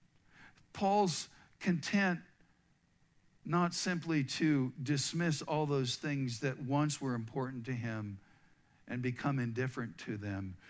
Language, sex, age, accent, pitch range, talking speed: English, male, 50-69, American, 130-180 Hz, 110 wpm